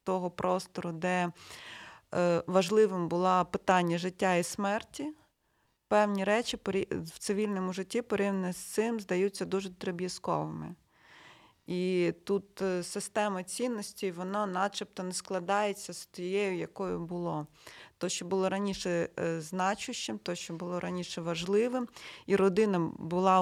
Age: 30-49